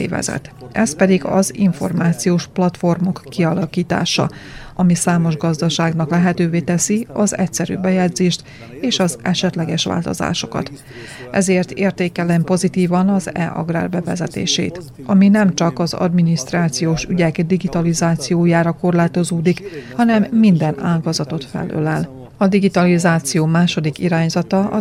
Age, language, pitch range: 30-49, Hungarian, 160-185 Hz